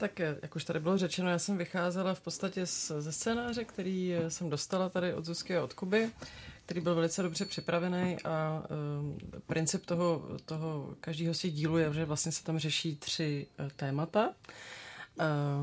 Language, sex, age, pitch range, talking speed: Czech, female, 30-49, 145-170 Hz, 165 wpm